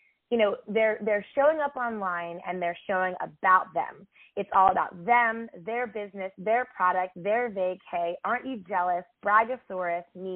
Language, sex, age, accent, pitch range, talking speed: English, female, 20-39, American, 185-240 Hz, 155 wpm